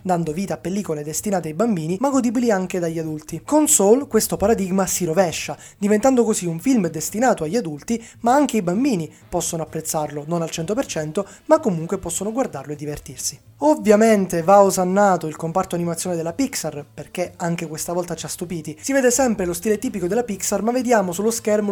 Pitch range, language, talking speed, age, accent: 165-225 Hz, Italian, 185 wpm, 20-39, native